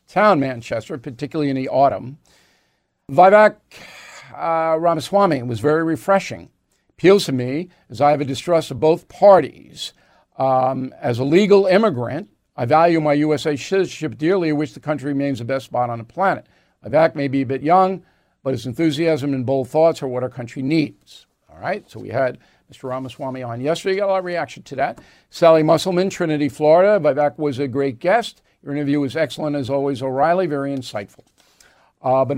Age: 50-69